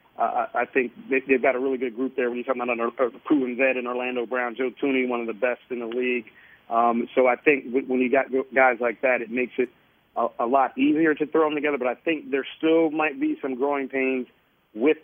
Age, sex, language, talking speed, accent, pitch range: 40-59, male, English, 255 wpm, American, 125-155 Hz